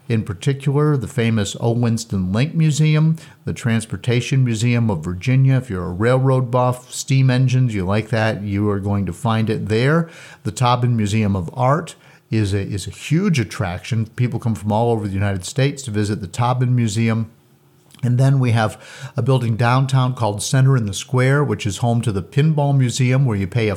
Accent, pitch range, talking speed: American, 105-135 Hz, 190 wpm